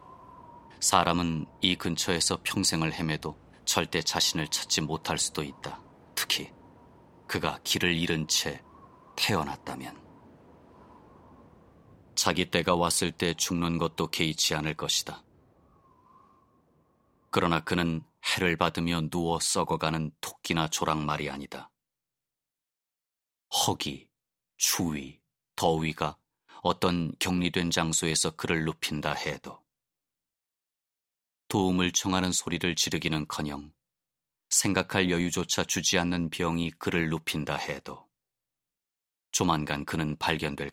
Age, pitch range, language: 30-49, 75-90 Hz, Korean